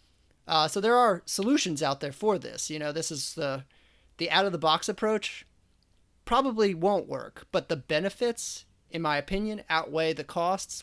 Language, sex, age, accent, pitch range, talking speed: English, male, 30-49, American, 135-165 Hz, 160 wpm